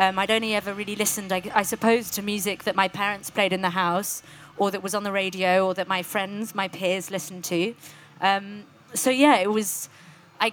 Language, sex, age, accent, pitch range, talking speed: English, female, 30-49, British, 175-205 Hz, 215 wpm